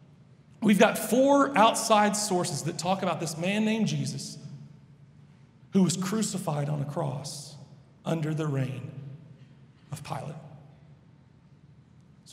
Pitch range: 150-215 Hz